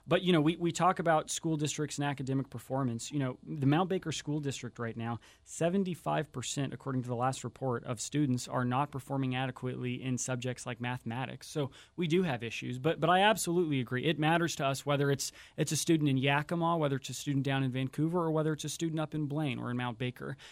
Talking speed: 230 wpm